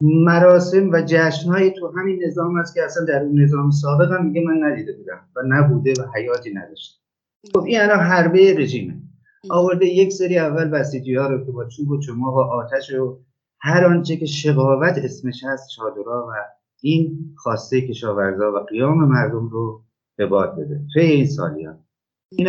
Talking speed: 175 wpm